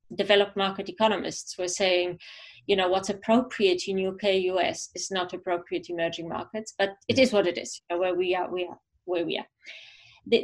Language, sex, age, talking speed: English, female, 30-49, 195 wpm